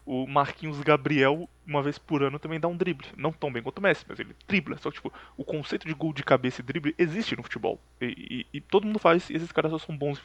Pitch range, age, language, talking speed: 145-180 Hz, 20-39, Portuguese, 275 wpm